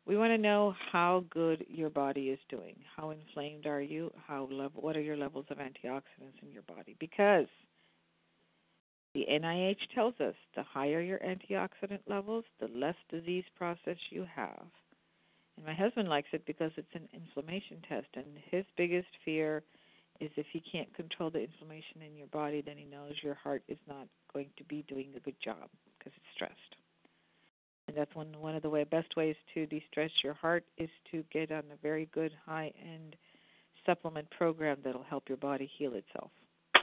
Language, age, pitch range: English, 50-69, 145-190 Hz